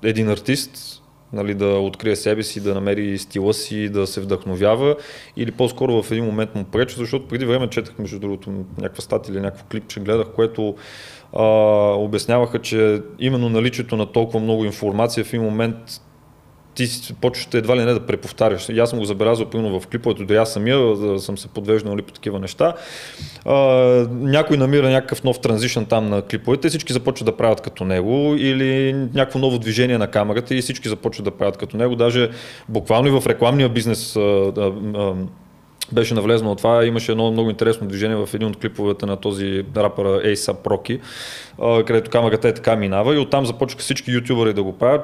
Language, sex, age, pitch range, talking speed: Bulgarian, male, 20-39, 105-125 Hz, 185 wpm